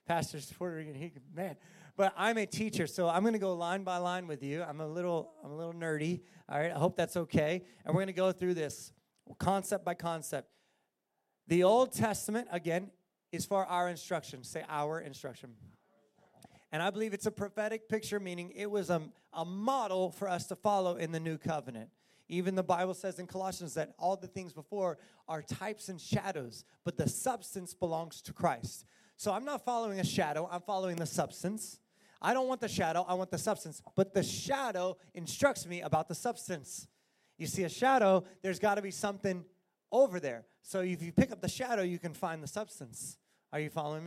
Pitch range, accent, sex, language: 165-195 Hz, American, male, English